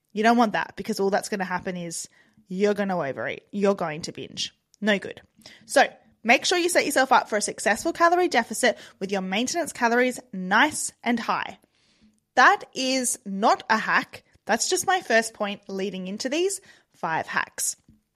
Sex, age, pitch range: female, 20-39, 200-280 Hz